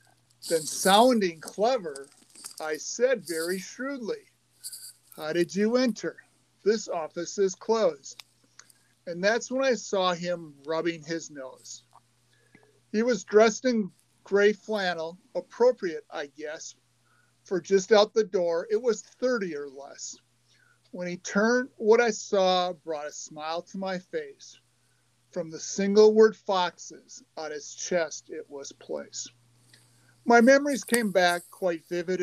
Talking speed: 135 wpm